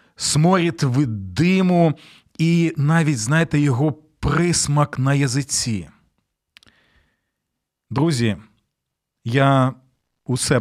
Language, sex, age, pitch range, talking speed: Ukrainian, male, 40-59, 125-160 Hz, 75 wpm